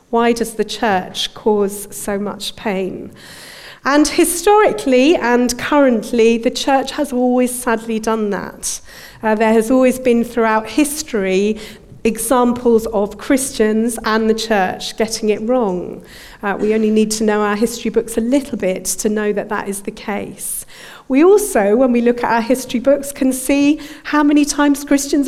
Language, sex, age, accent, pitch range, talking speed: English, female, 40-59, British, 220-270 Hz, 165 wpm